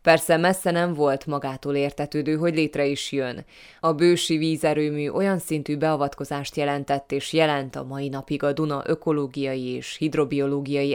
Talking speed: 150 wpm